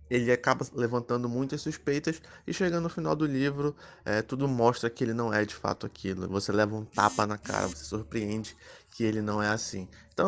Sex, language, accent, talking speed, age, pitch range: male, Portuguese, Brazilian, 200 wpm, 20-39, 110-135 Hz